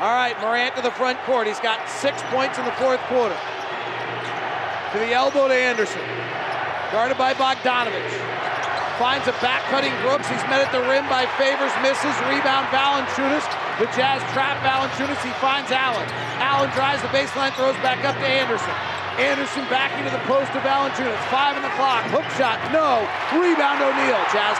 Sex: male